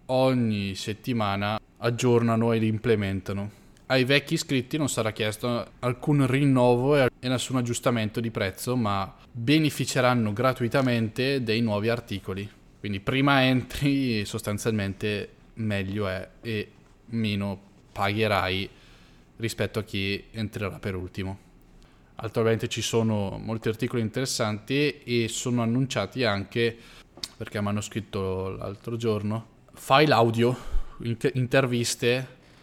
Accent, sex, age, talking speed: native, male, 20-39, 105 wpm